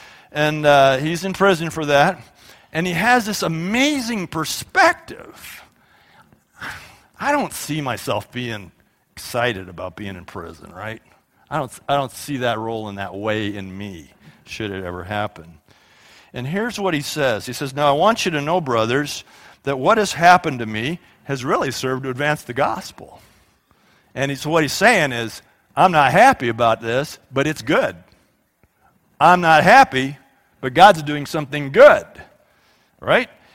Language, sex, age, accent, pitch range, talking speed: English, male, 50-69, American, 130-210 Hz, 160 wpm